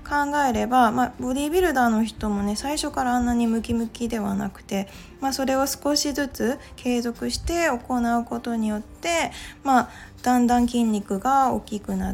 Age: 20-39